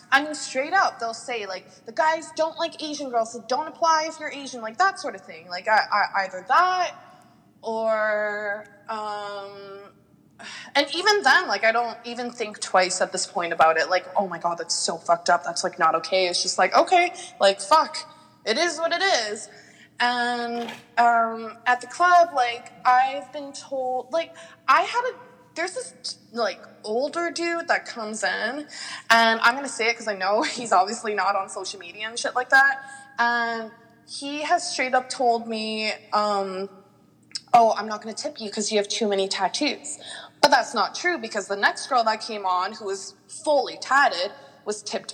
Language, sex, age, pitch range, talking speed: English, female, 20-39, 205-280 Hz, 190 wpm